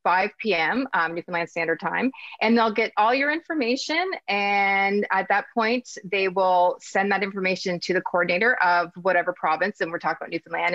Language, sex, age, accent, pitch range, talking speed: English, female, 30-49, American, 180-230 Hz, 180 wpm